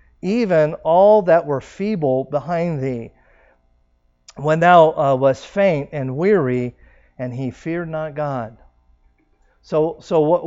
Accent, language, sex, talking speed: American, English, male, 125 wpm